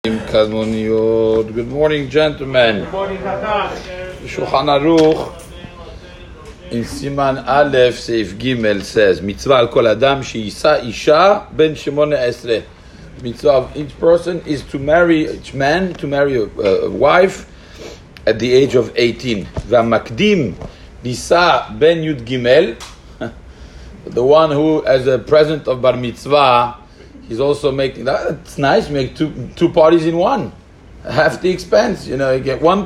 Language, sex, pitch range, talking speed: English, male, 110-155 Hz, 120 wpm